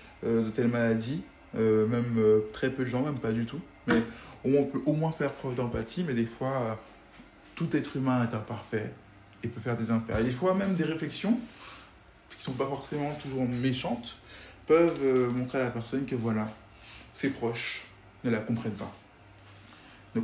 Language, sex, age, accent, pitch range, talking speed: French, male, 20-39, French, 115-140 Hz, 190 wpm